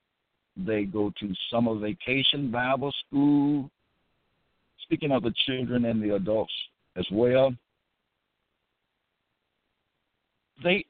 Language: English